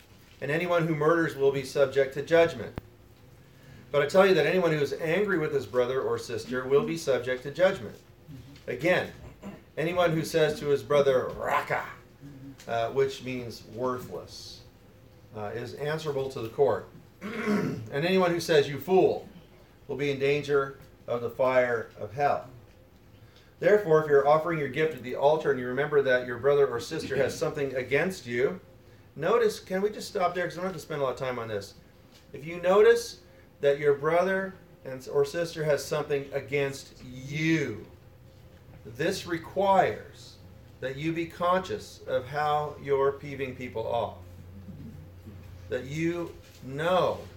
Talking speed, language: 160 wpm, English